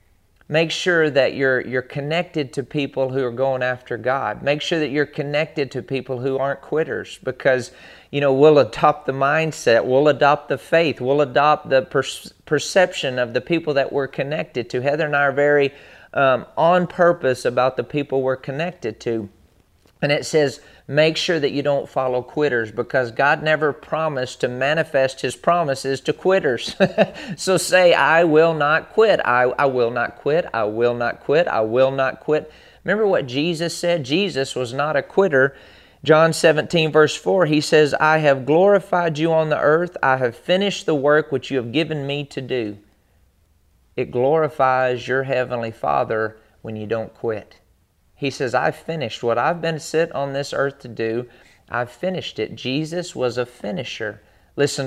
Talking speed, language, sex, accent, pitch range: 180 wpm, English, male, American, 125-155 Hz